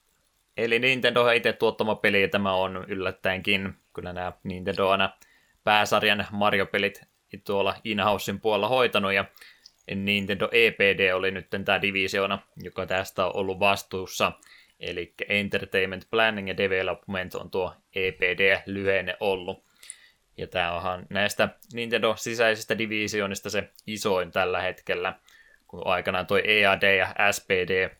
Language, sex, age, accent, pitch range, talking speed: Finnish, male, 20-39, native, 95-105 Hz, 130 wpm